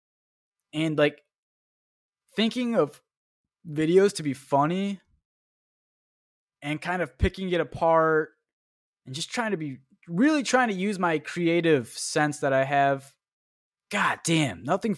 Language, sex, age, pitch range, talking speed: English, male, 20-39, 140-205 Hz, 130 wpm